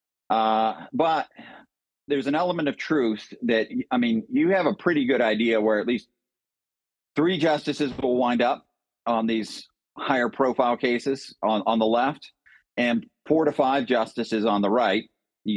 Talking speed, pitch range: 160 wpm, 110-140 Hz